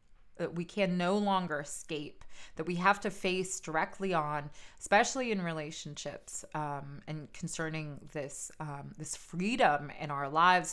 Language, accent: English, American